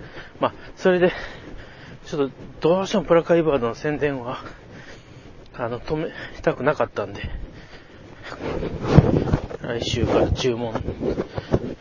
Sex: male